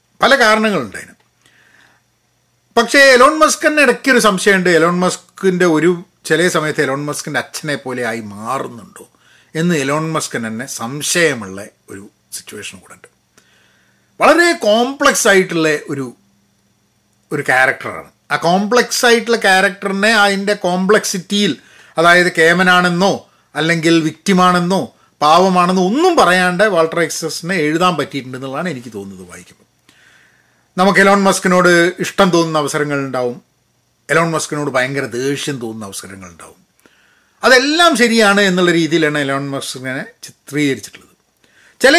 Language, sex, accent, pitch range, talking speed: Malayalam, male, native, 145-200 Hz, 100 wpm